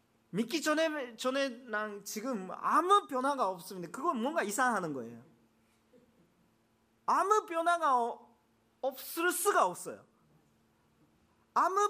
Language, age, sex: Korean, 40-59, male